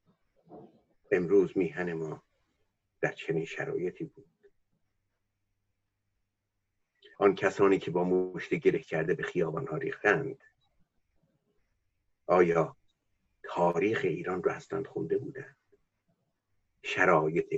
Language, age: Persian, 50-69